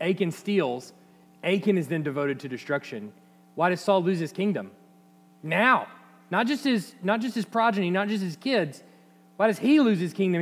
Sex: male